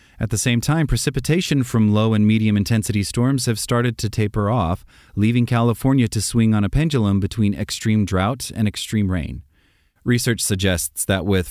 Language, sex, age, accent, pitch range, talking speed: English, male, 30-49, American, 95-120 Hz, 165 wpm